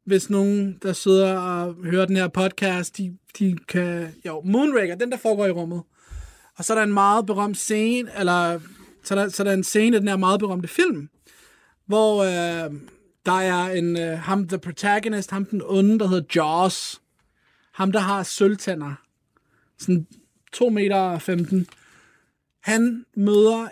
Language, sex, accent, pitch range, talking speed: Danish, male, native, 180-215 Hz, 170 wpm